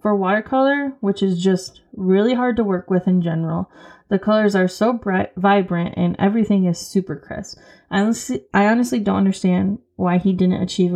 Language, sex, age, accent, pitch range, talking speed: English, female, 20-39, American, 180-205 Hz, 175 wpm